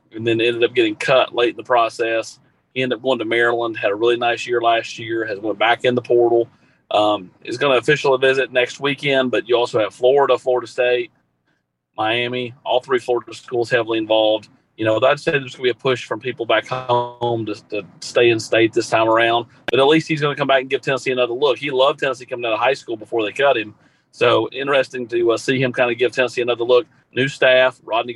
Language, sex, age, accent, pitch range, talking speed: English, male, 40-59, American, 115-130 Hz, 240 wpm